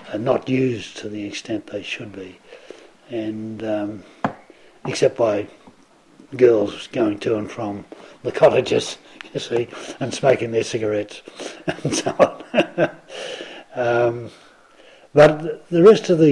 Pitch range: 110-150 Hz